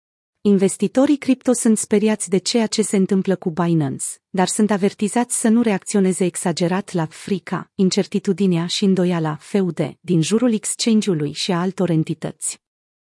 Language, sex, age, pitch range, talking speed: Romanian, female, 30-49, 175-220 Hz, 140 wpm